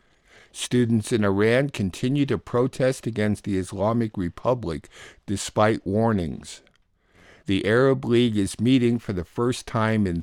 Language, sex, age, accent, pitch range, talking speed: English, male, 60-79, American, 100-120 Hz, 130 wpm